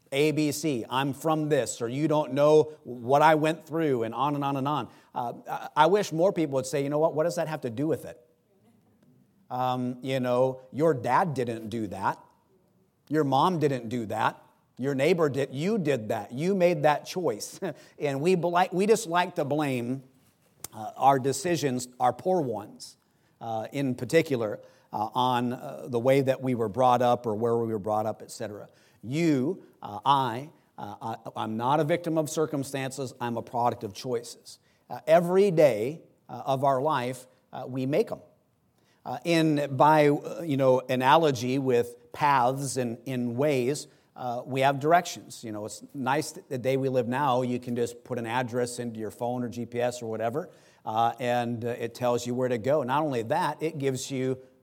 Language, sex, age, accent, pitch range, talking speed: English, male, 50-69, American, 120-150 Hz, 190 wpm